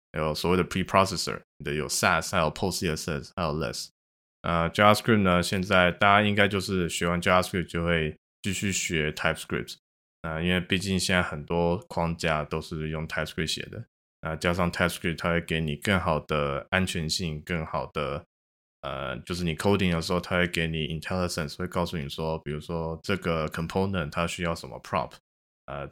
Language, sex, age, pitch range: Chinese, male, 20-39, 80-90 Hz